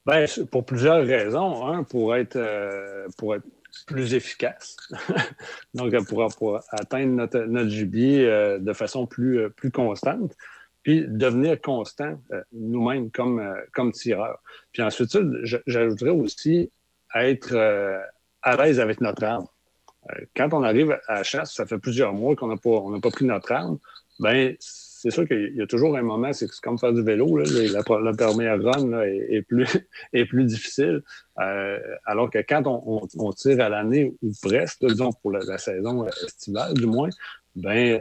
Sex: male